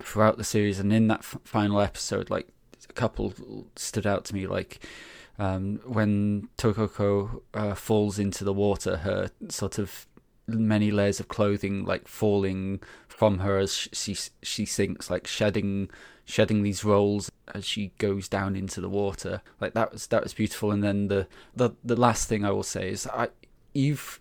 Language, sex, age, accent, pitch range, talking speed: English, male, 20-39, British, 100-110 Hz, 180 wpm